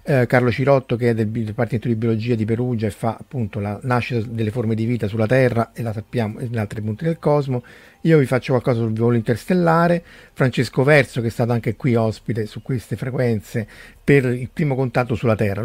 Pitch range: 115-135 Hz